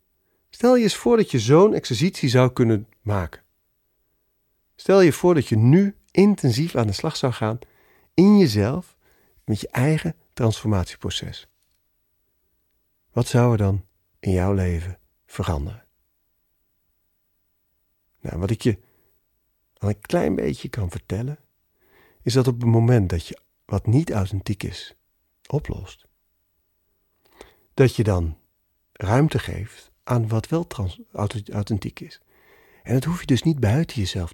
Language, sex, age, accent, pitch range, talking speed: Dutch, male, 40-59, Dutch, 100-140 Hz, 135 wpm